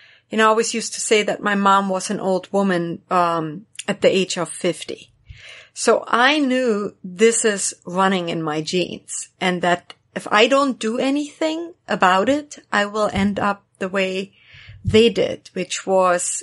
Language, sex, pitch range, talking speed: English, female, 185-225 Hz, 175 wpm